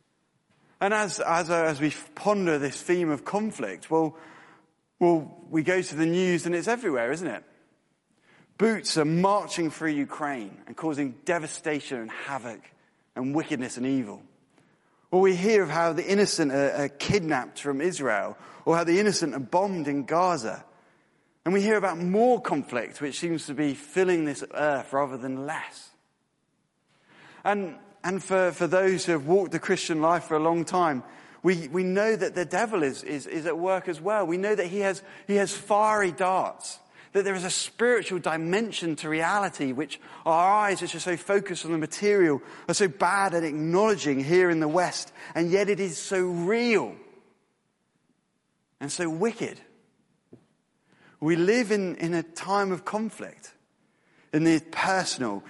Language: English